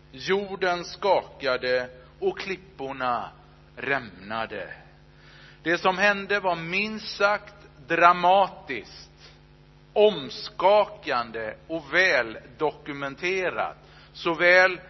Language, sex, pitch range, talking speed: Swedish, male, 150-200 Hz, 70 wpm